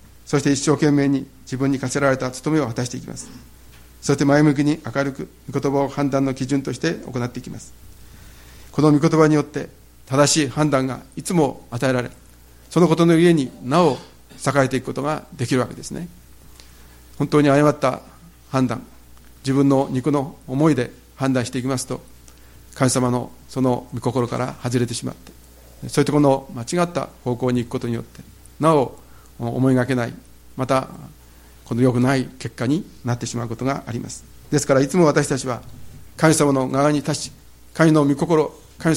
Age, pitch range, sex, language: 50-69, 120-145 Hz, male, Japanese